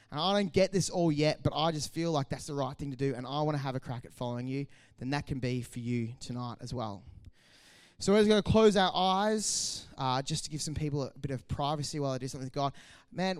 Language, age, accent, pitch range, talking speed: English, 20-39, Australian, 125-155 Hz, 280 wpm